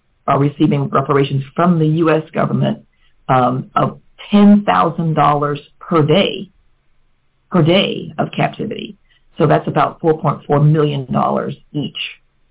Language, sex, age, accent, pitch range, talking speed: English, female, 50-69, American, 135-175 Hz, 105 wpm